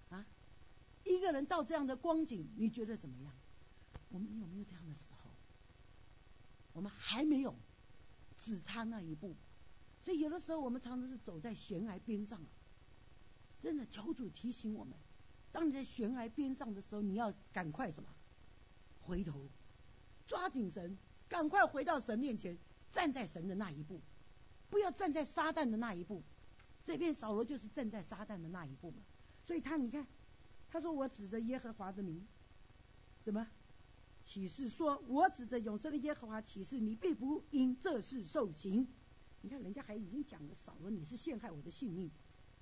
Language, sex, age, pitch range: Chinese, female, 50-69, 185-290 Hz